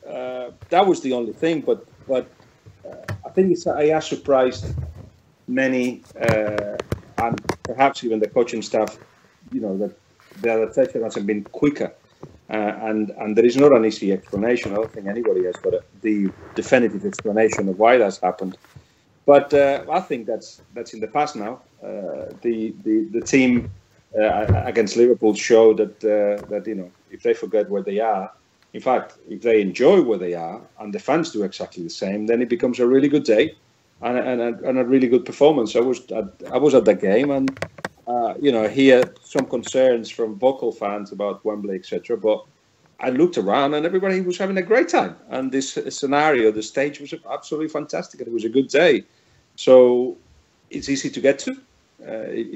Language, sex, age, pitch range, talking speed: English, male, 40-59, 110-145 Hz, 190 wpm